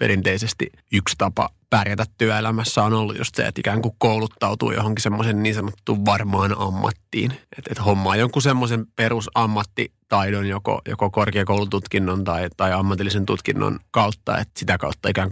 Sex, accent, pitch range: male, native, 100-115 Hz